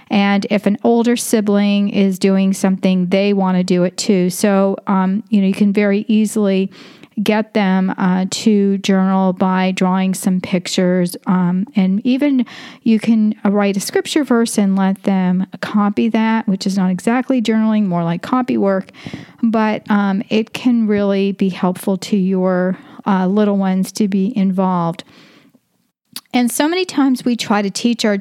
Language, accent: English, American